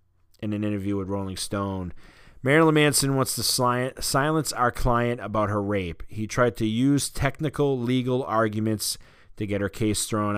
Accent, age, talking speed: American, 30-49, 160 wpm